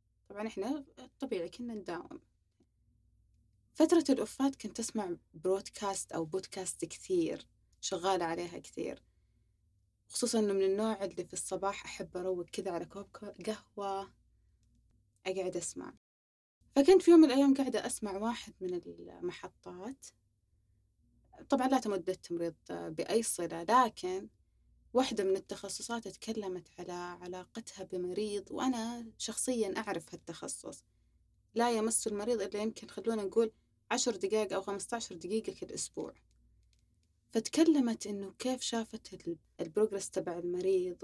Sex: female